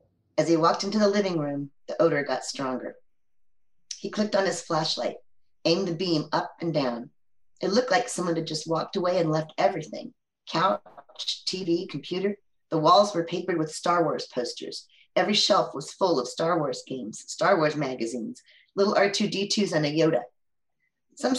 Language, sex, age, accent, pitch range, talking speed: English, female, 40-59, American, 155-195 Hz, 170 wpm